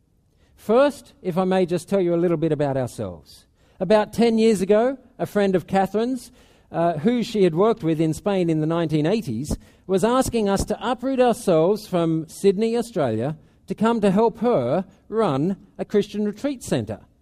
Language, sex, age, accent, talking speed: English, male, 50-69, Australian, 175 wpm